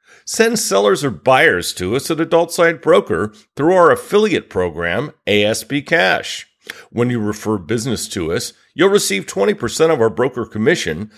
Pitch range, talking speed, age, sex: 105-165 Hz, 155 wpm, 50-69, male